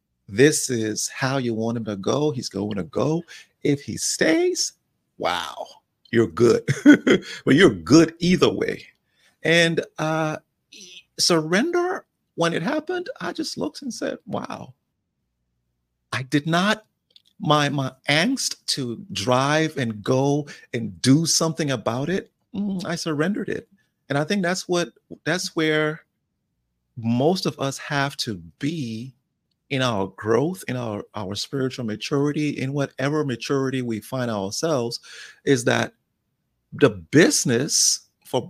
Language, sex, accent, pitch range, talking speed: English, male, American, 115-165 Hz, 130 wpm